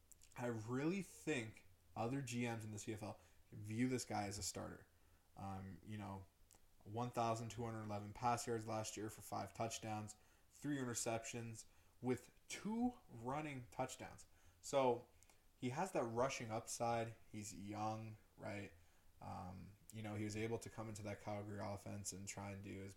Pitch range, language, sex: 95-110 Hz, English, male